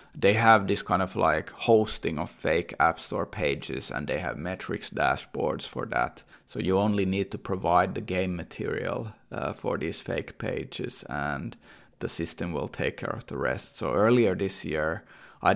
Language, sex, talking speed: English, male, 180 wpm